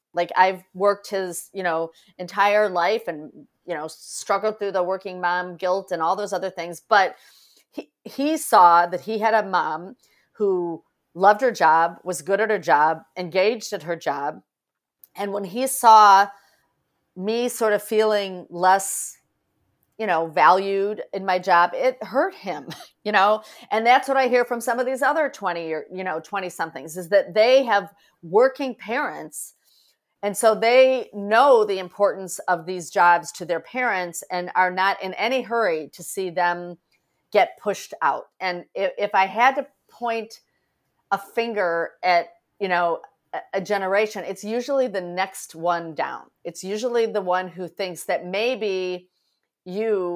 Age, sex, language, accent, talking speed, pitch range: 40-59, female, English, American, 165 wpm, 175-215 Hz